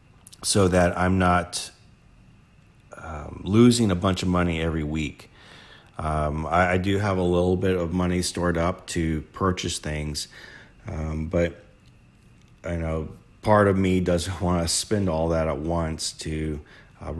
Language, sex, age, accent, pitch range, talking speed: English, male, 40-59, American, 80-95 Hz, 155 wpm